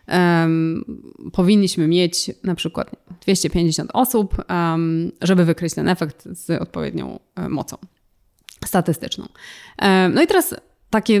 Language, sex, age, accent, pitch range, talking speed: Polish, female, 20-39, native, 175-220 Hz, 120 wpm